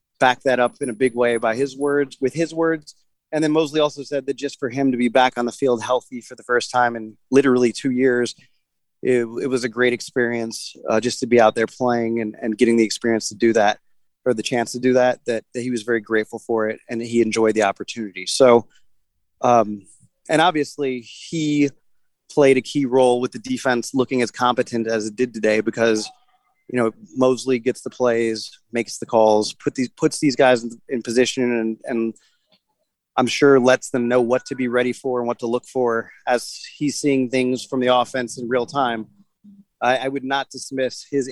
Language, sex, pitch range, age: English, male, 115-140 Hz, 30-49